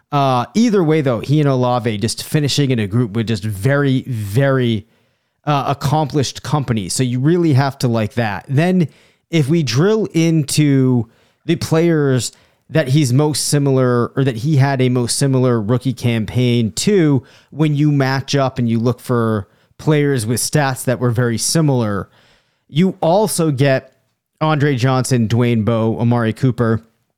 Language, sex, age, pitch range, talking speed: English, male, 30-49, 120-150 Hz, 155 wpm